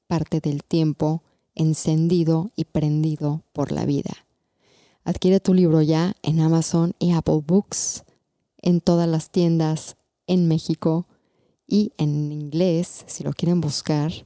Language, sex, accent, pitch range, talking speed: Spanish, female, Mexican, 155-175 Hz, 130 wpm